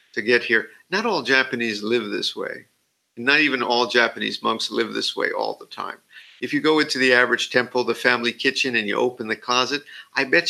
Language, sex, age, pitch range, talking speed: English, male, 50-69, 125-160 Hz, 210 wpm